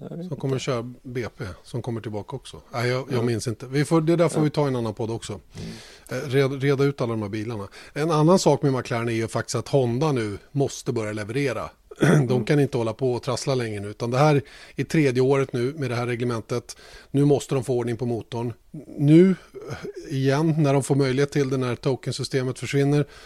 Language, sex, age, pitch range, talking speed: Swedish, male, 30-49, 115-140 Hz, 215 wpm